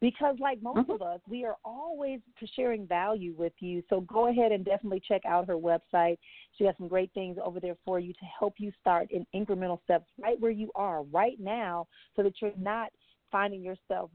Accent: American